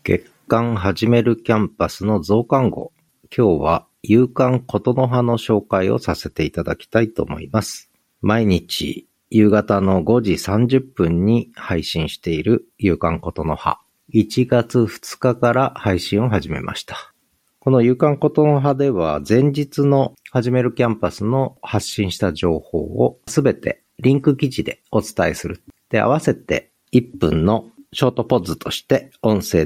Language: Japanese